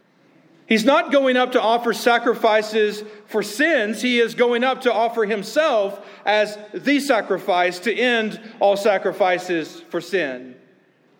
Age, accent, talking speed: 40-59, American, 135 wpm